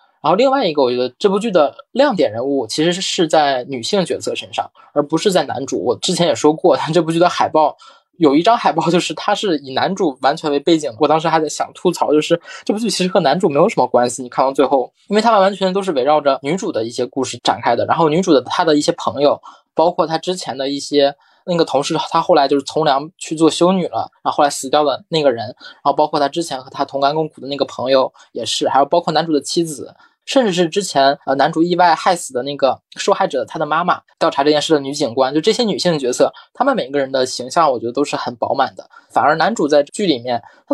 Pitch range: 140-195 Hz